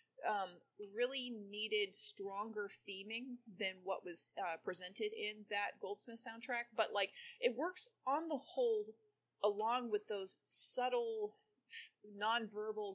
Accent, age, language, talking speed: American, 30-49, English, 120 wpm